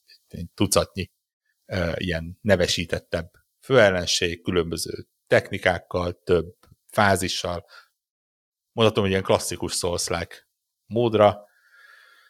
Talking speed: 80 wpm